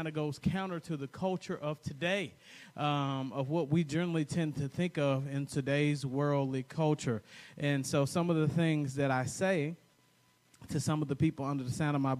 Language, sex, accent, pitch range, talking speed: English, male, American, 140-170 Hz, 195 wpm